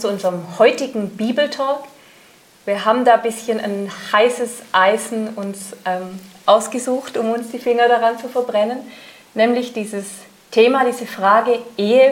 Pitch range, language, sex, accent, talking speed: 200-245 Hz, German, female, German, 140 wpm